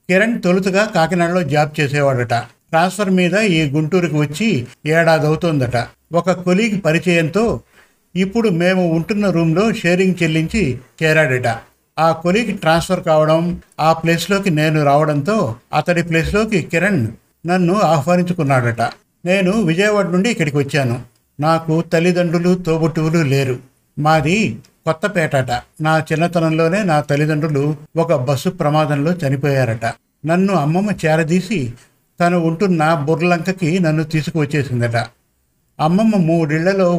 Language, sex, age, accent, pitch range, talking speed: Telugu, male, 60-79, native, 150-180 Hz, 105 wpm